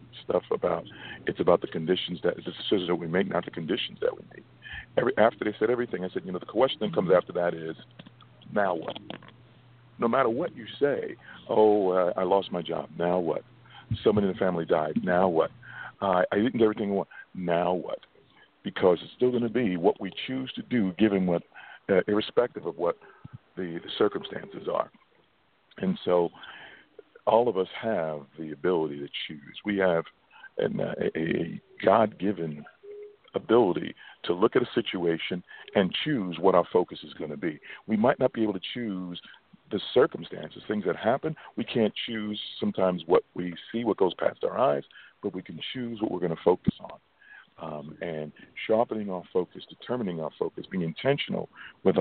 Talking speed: 185 wpm